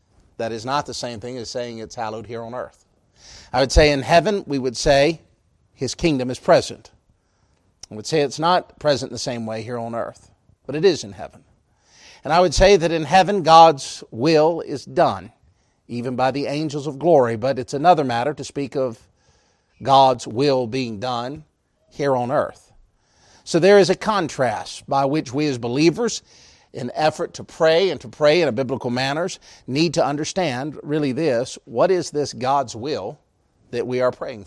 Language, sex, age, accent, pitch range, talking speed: English, male, 40-59, American, 120-155 Hz, 190 wpm